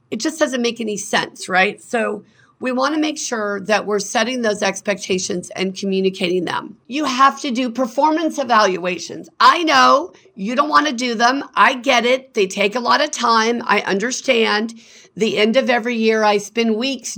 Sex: female